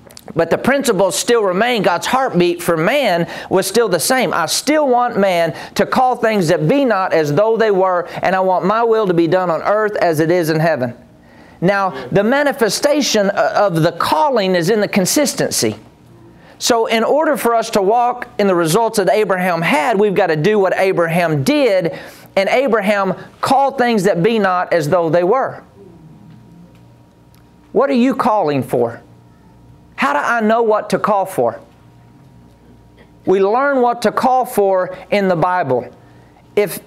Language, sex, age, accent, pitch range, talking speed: English, male, 40-59, American, 175-240 Hz, 175 wpm